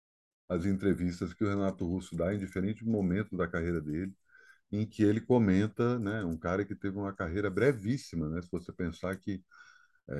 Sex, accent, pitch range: male, Brazilian, 90-115 Hz